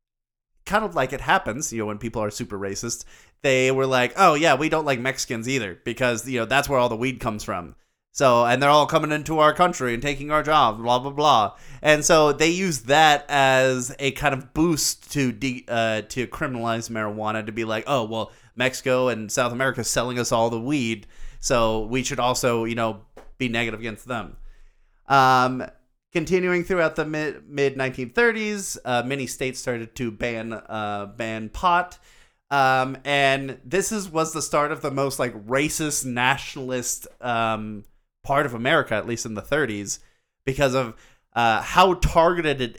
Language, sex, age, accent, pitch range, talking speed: English, male, 30-49, American, 115-140 Hz, 180 wpm